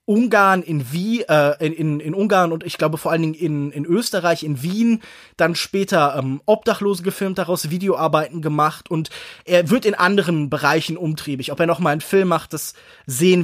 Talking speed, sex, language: 190 wpm, male, German